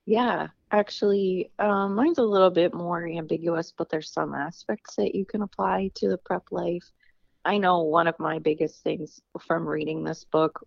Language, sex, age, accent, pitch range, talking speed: English, female, 30-49, American, 145-180 Hz, 180 wpm